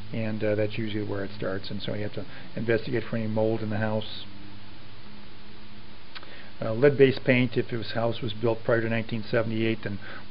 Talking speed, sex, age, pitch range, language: 180 wpm, male, 40-59, 110-120 Hz, English